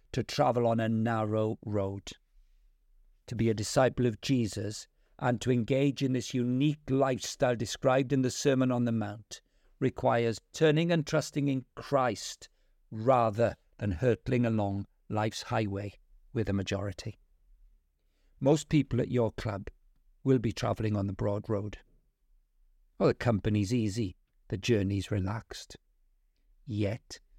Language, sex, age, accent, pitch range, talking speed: English, male, 50-69, British, 105-140 Hz, 135 wpm